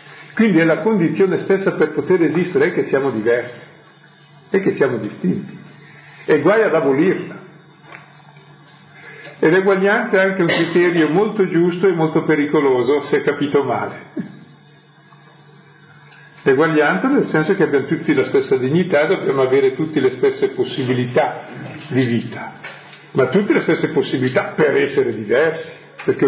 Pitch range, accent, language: 145-180 Hz, native, Italian